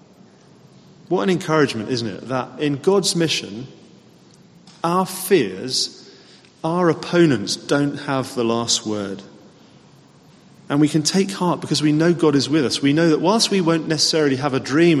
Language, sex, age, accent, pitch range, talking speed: English, male, 30-49, British, 115-170 Hz, 160 wpm